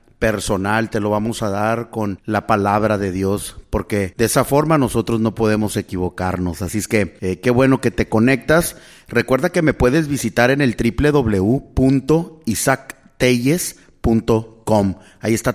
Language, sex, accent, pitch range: English, male, Mexican, 100-130 Hz